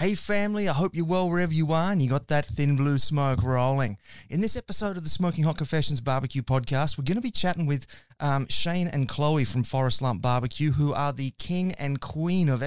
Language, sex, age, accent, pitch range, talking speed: English, male, 30-49, Australian, 130-165 Hz, 225 wpm